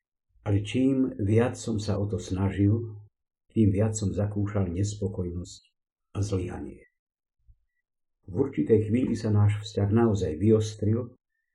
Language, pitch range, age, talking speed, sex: Slovak, 95-110 Hz, 50-69, 120 wpm, male